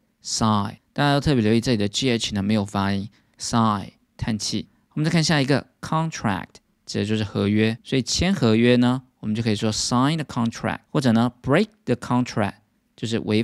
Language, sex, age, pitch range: Chinese, male, 20-39, 105-140 Hz